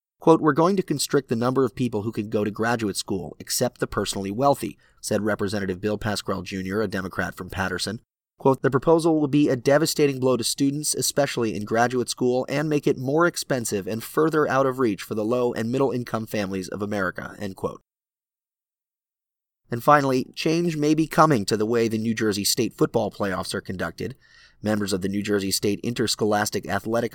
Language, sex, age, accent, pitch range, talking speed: English, male, 30-49, American, 105-135 Hz, 190 wpm